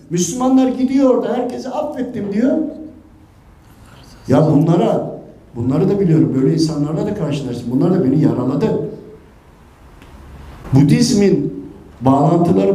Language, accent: Turkish, native